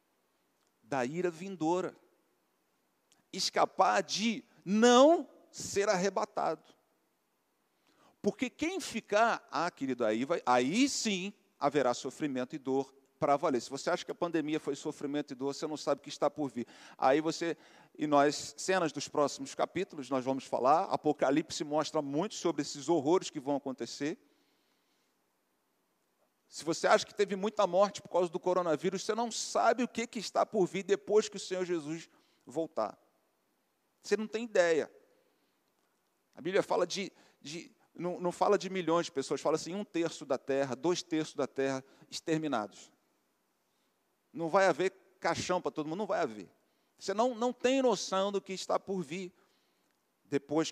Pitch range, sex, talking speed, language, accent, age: 145-200 Hz, male, 155 wpm, Portuguese, Brazilian, 50-69